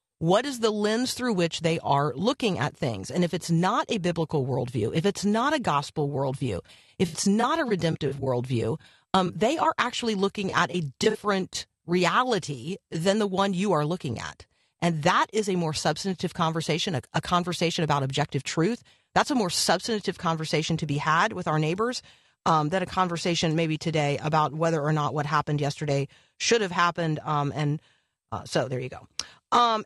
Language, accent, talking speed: English, American, 190 wpm